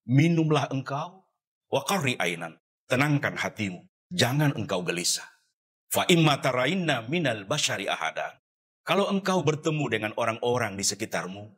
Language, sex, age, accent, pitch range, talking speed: Indonesian, male, 50-69, native, 105-155 Hz, 105 wpm